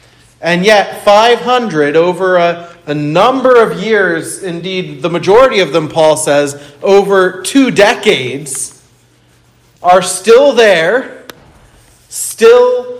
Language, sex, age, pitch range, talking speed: English, male, 40-59, 130-190 Hz, 105 wpm